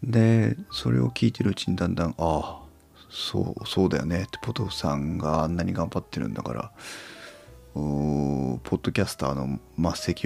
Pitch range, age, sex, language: 75-105 Hz, 40-59, male, Japanese